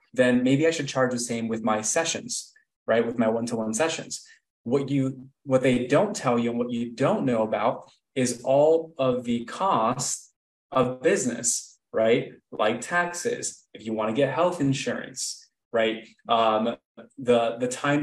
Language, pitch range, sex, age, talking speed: English, 120-160 Hz, male, 20-39, 165 wpm